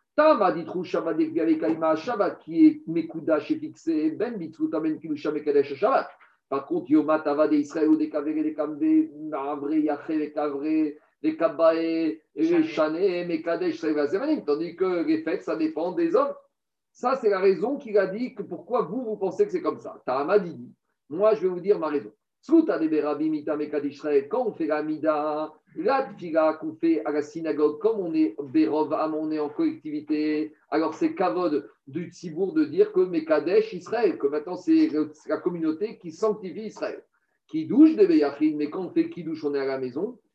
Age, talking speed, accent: 50-69, 130 wpm, French